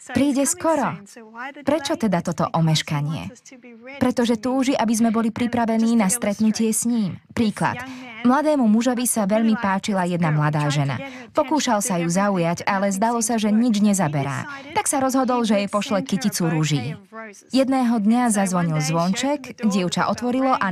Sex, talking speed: female, 145 wpm